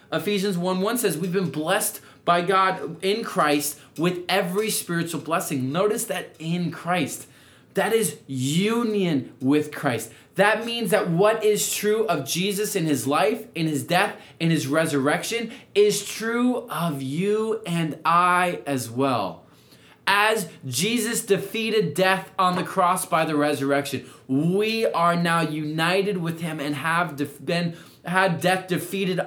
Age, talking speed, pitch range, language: 20-39, 145 wpm, 150-210 Hz, English